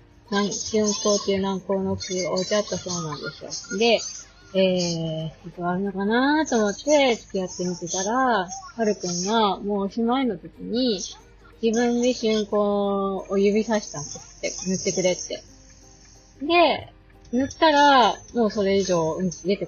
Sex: female